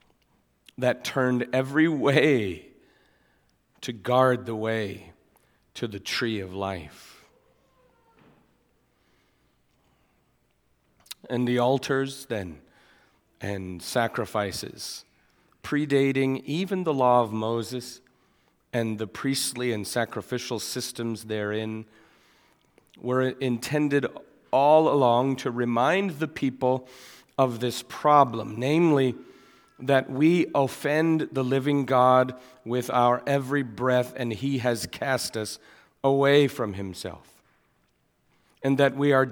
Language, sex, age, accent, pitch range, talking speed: English, male, 40-59, American, 115-140 Hz, 100 wpm